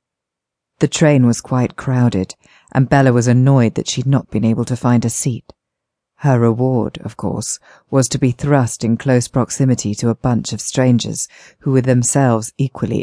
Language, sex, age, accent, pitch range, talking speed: English, female, 40-59, British, 115-130 Hz, 175 wpm